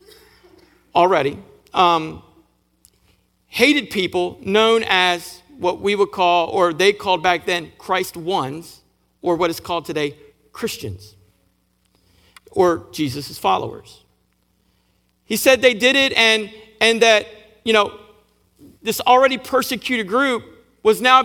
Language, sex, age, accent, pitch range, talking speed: English, male, 50-69, American, 155-240 Hz, 120 wpm